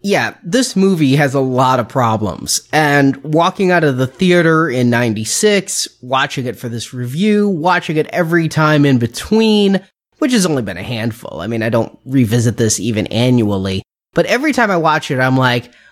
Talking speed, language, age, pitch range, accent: 185 wpm, English, 30-49, 130-185 Hz, American